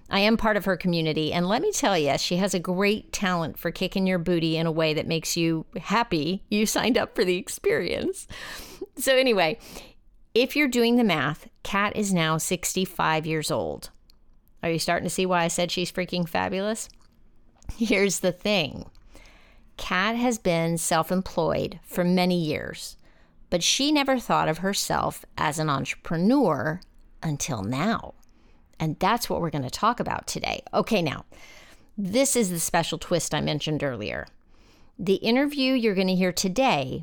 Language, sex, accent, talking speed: English, female, American, 170 wpm